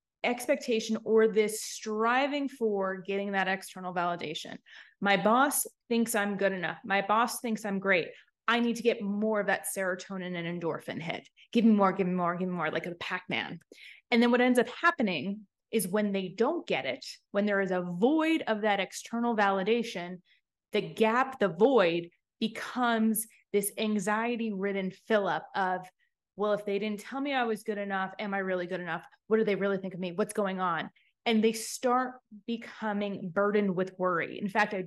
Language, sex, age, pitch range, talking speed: English, female, 20-39, 195-245 Hz, 190 wpm